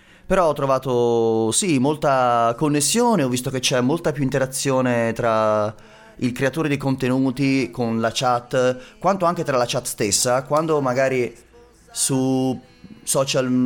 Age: 30-49